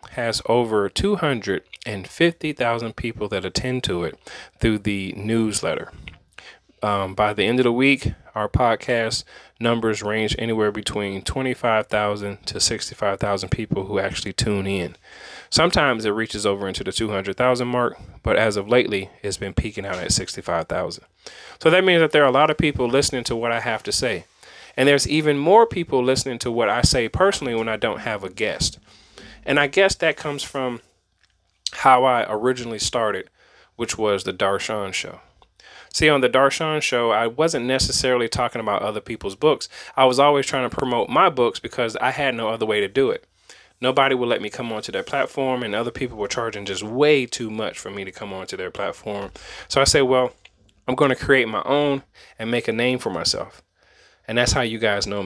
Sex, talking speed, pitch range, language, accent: male, 190 wpm, 100-135 Hz, English, American